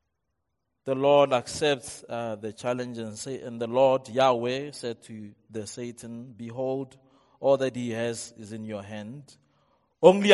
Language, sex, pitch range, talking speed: English, male, 105-130 Hz, 150 wpm